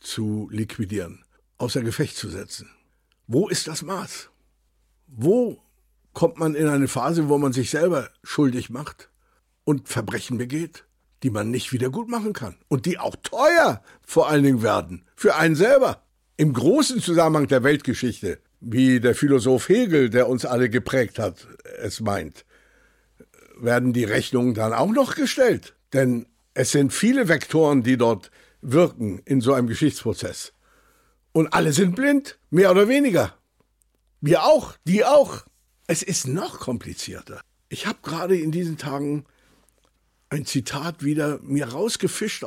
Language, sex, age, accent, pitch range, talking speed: German, male, 60-79, German, 120-165 Hz, 145 wpm